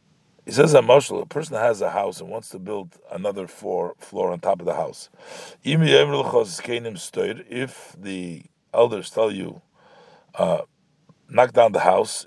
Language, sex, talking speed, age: English, male, 140 wpm, 50-69